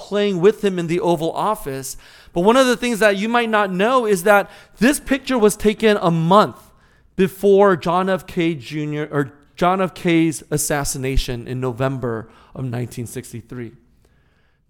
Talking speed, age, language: 150 wpm, 30-49, English